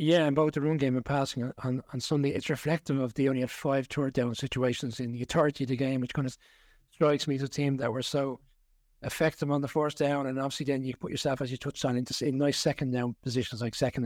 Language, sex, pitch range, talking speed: English, male, 130-155 Hz, 250 wpm